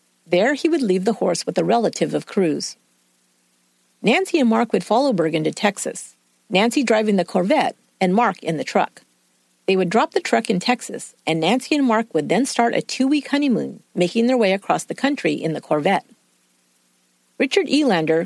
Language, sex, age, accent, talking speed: English, female, 50-69, American, 185 wpm